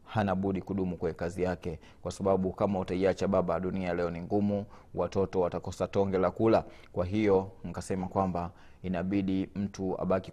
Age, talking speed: 30-49, 155 wpm